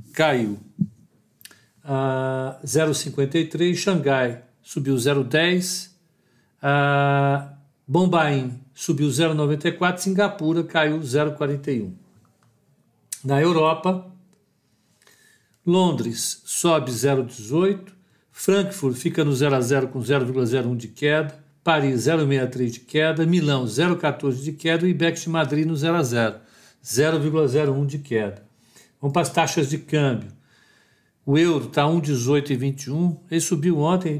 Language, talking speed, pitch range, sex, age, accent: Portuguese, 105 wpm, 130-165 Hz, male, 60-79, Brazilian